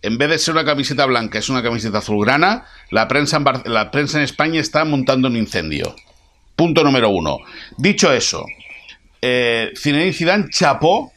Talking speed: 170 wpm